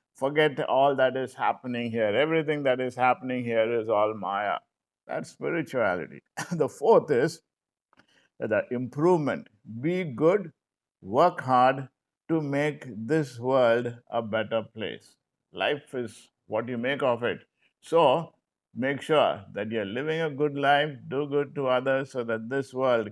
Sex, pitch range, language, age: male, 115-140 Hz, English, 50-69